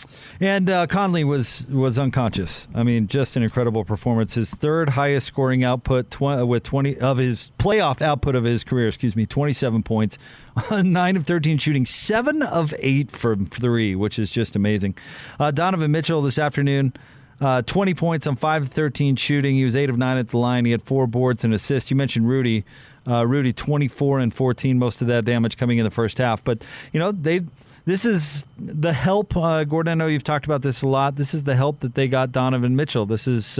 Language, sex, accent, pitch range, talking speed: English, male, American, 120-145 Hz, 215 wpm